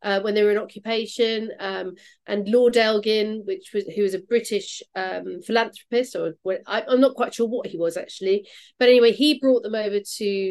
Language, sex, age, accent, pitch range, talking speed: English, female, 40-59, British, 215-330 Hz, 205 wpm